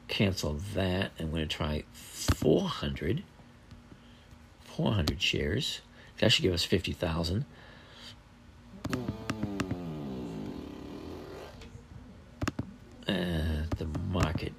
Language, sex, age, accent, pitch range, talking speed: English, male, 50-69, American, 90-115 Hz, 70 wpm